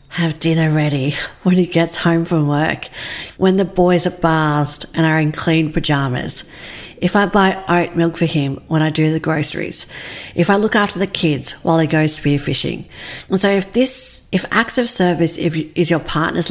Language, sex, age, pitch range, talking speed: English, female, 50-69, 155-205 Hz, 195 wpm